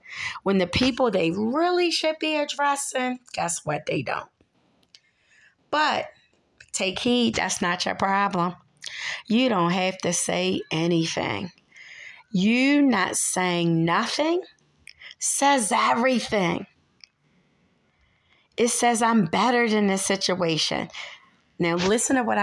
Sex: female